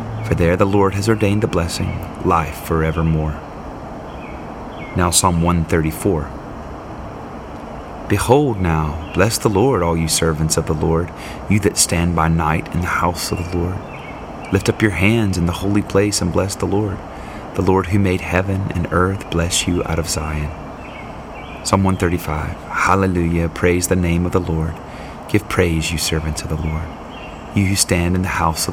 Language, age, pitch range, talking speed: English, 30-49, 80-95 Hz, 170 wpm